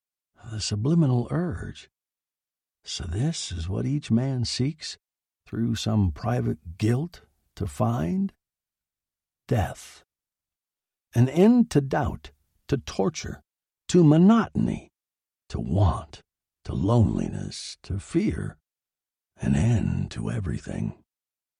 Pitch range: 110-165 Hz